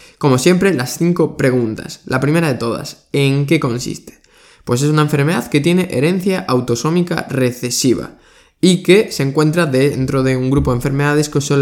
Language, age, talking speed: Spanish, 20-39, 170 wpm